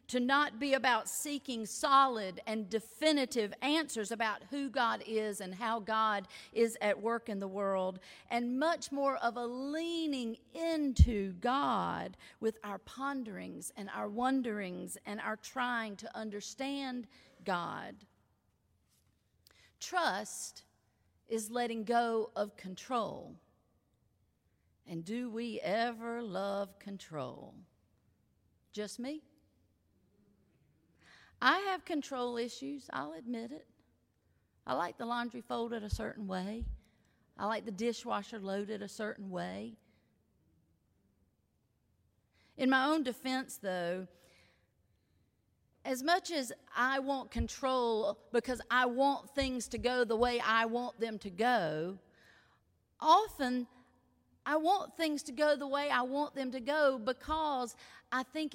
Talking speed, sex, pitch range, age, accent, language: 120 wpm, female, 190-260 Hz, 40-59, American, English